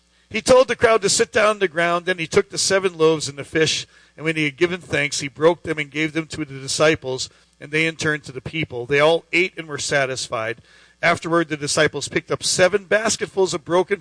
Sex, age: male, 50-69